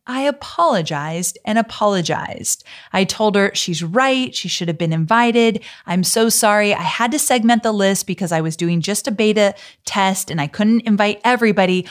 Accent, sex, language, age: American, female, English, 30-49